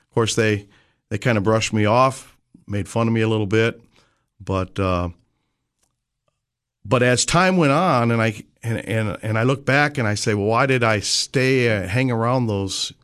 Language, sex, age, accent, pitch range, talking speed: English, male, 50-69, American, 100-125 Hz, 200 wpm